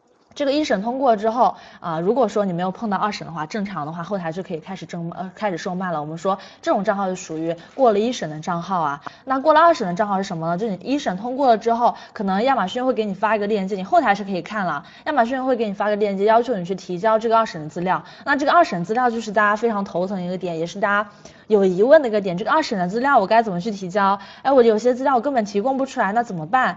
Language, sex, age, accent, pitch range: Chinese, female, 20-39, native, 180-230 Hz